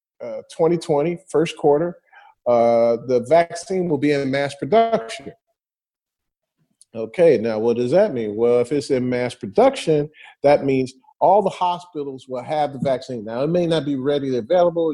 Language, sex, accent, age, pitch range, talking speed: English, male, American, 40-59, 150-215 Hz, 160 wpm